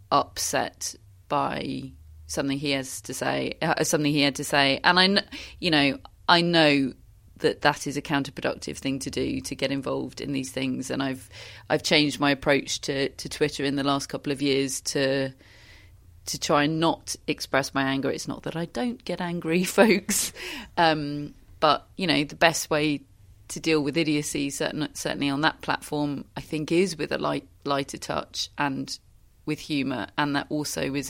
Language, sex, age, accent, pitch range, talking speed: English, female, 30-49, British, 135-155 Hz, 180 wpm